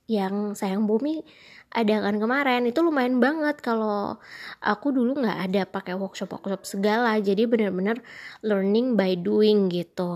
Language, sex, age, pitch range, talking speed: Indonesian, female, 20-39, 195-230 Hz, 140 wpm